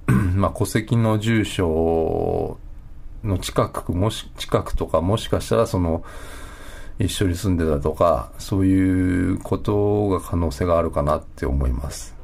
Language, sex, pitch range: Japanese, male, 75-105 Hz